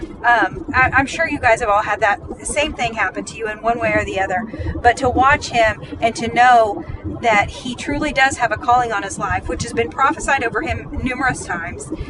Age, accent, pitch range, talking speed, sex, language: 40-59, American, 240-320 Hz, 225 wpm, female, English